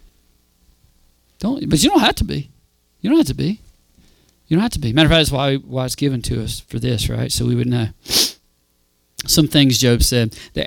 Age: 40-59